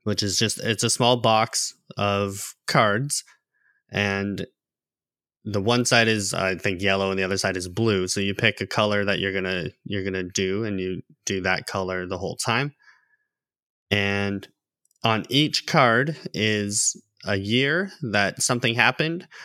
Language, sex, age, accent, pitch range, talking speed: English, male, 20-39, American, 100-120 Hz, 165 wpm